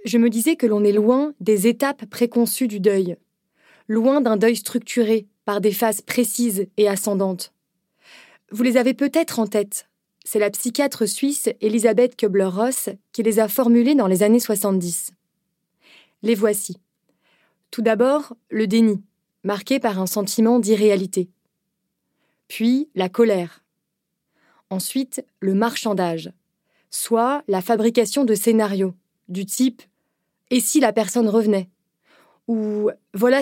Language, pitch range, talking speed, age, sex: French, 200-245 Hz, 135 wpm, 20-39, female